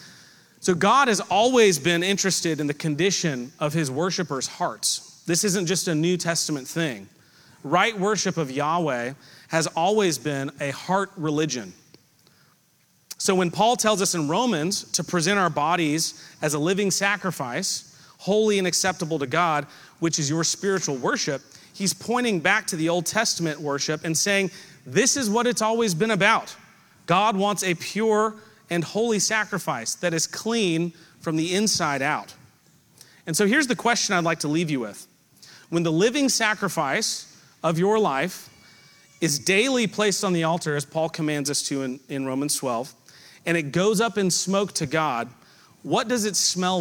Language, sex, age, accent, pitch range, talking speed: English, male, 30-49, American, 155-200 Hz, 170 wpm